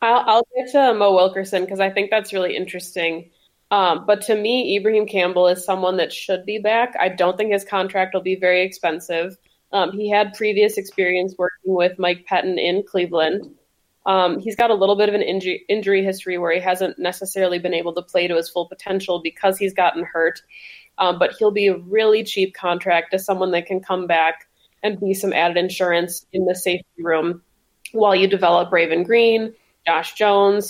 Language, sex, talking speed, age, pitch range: English, female, 195 wpm, 20-39, 175-200 Hz